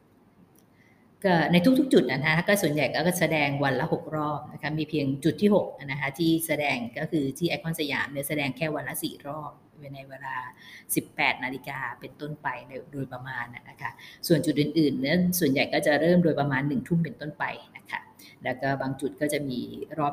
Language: Thai